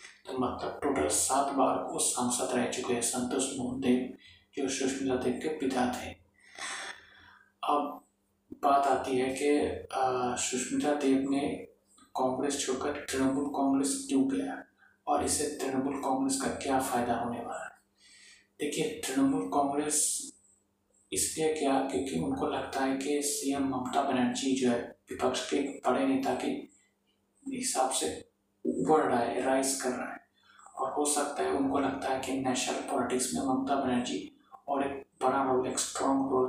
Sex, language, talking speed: male, Hindi, 145 wpm